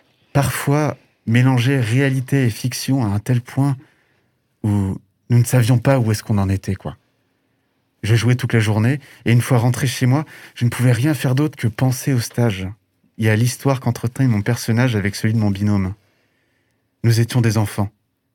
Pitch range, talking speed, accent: 105-130 Hz, 185 wpm, French